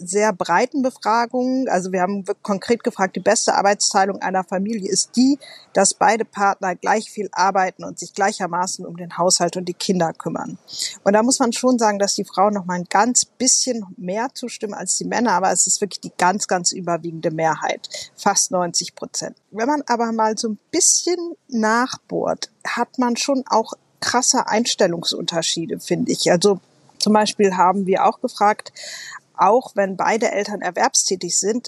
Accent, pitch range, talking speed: German, 190-235 Hz, 170 wpm